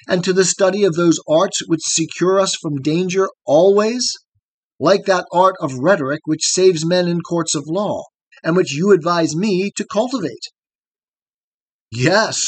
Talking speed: 160 wpm